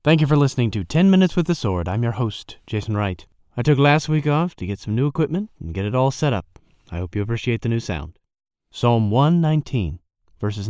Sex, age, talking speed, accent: male, 30-49, 230 wpm, American